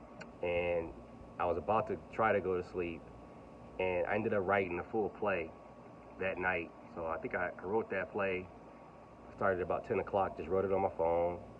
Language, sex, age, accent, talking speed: English, male, 30-49, American, 195 wpm